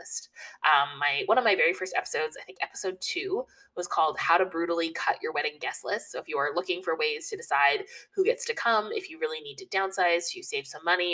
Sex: female